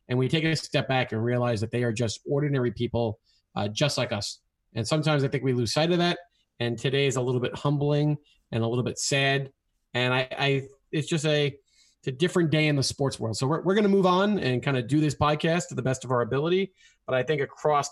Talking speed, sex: 250 wpm, male